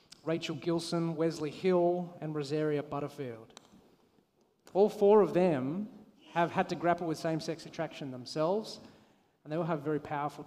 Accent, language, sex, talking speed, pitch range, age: Australian, English, male, 145 wpm, 155-180 Hz, 30-49